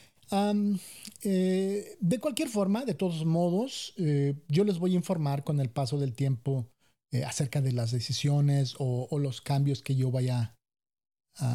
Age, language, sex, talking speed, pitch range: 40-59, English, male, 165 wpm, 130-165 Hz